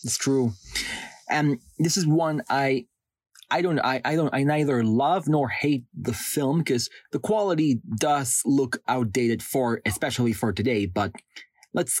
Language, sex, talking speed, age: English, male, 155 wpm, 30-49